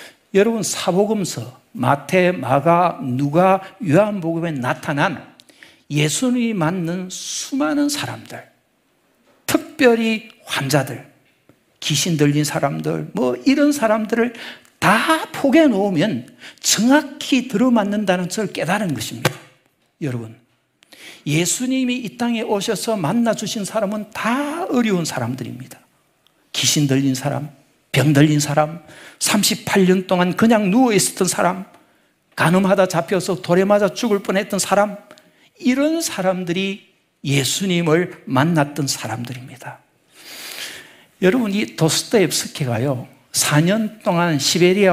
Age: 60-79